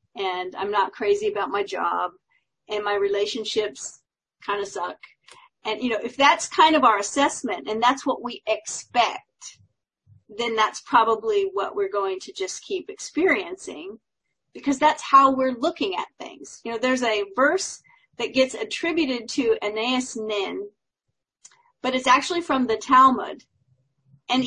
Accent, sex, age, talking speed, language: American, female, 40-59, 150 wpm, English